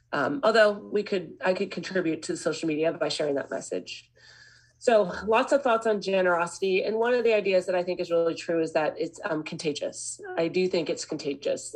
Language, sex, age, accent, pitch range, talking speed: English, female, 30-49, American, 155-185 Hz, 210 wpm